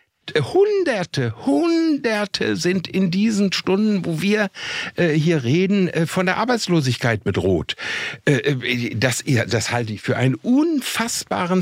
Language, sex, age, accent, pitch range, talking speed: German, male, 60-79, German, 125-190 Hz, 120 wpm